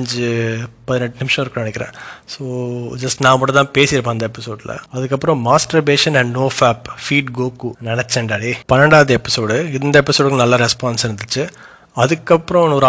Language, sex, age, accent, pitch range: Tamil, male, 30-49, native, 120-145 Hz